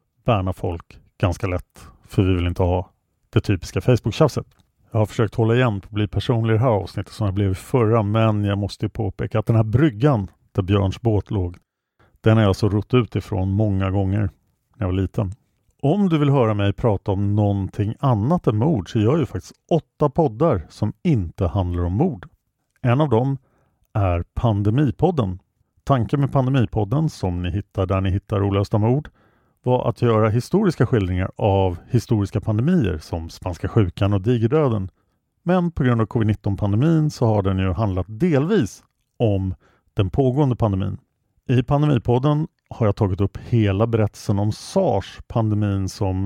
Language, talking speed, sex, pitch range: English, 170 wpm, male, 100-125 Hz